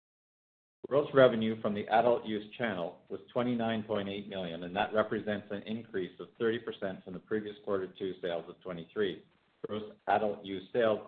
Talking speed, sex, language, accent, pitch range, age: 155 wpm, male, English, American, 95-115 Hz, 50-69